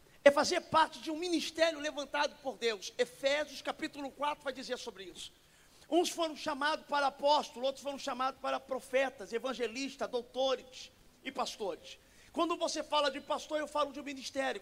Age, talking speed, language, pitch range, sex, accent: 40-59, 165 wpm, Portuguese, 255-300 Hz, male, Brazilian